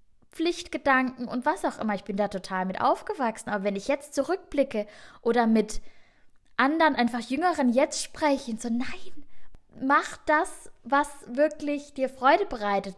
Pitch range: 225-295 Hz